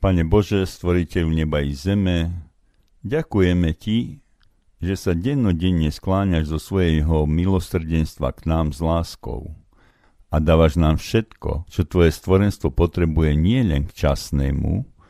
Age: 50-69